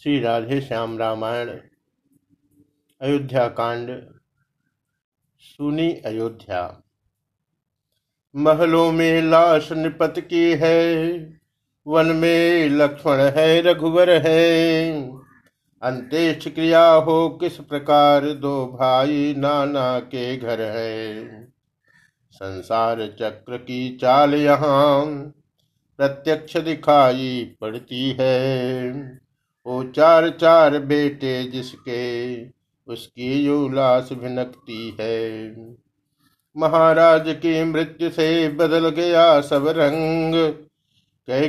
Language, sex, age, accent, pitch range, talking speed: Hindi, male, 50-69, native, 125-160 Hz, 80 wpm